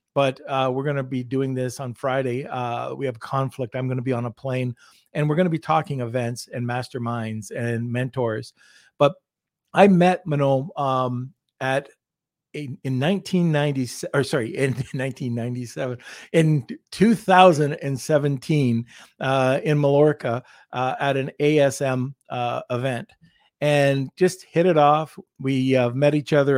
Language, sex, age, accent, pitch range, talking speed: English, male, 50-69, American, 130-165 Hz, 145 wpm